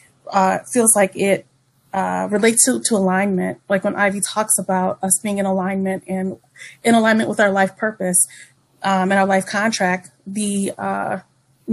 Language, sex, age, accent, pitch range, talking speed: English, female, 30-49, American, 185-220 Hz, 165 wpm